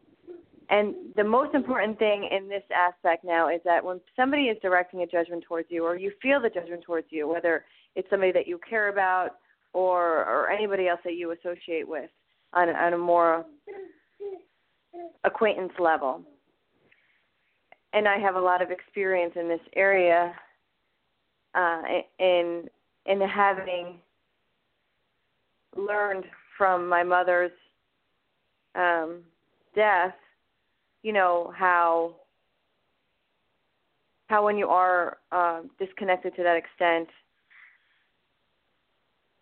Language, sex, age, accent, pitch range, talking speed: English, female, 30-49, American, 170-205 Hz, 120 wpm